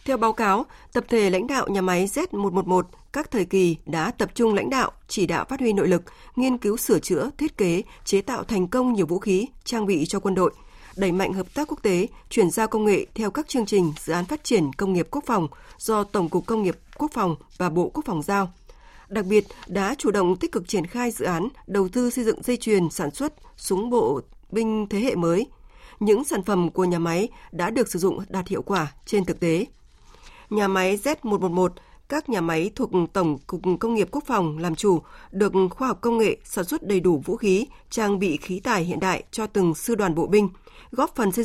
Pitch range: 185-240 Hz